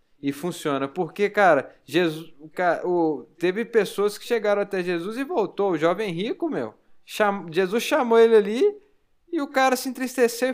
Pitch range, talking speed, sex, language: 160-200 Hz, 165 wpm, male, Portuguese